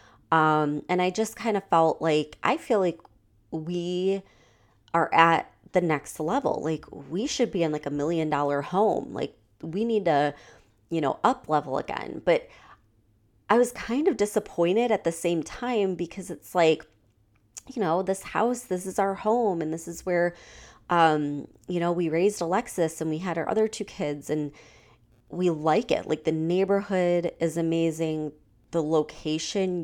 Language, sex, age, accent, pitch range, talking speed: English, female, 30-49, American, 145-180 Hz, 170 wpm